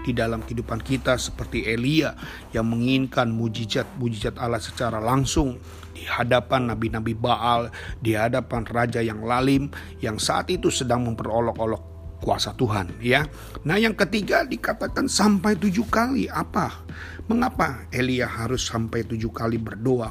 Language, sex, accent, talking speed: Indonesian, male, native, 130 wpm